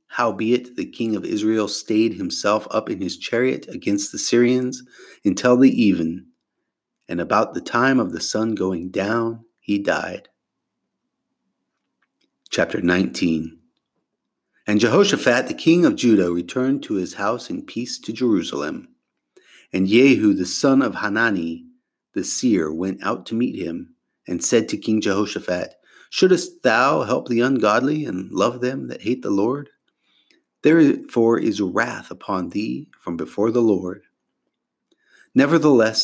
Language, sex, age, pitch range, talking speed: English, male, 30-49, 105-155 Hz, 140 wpm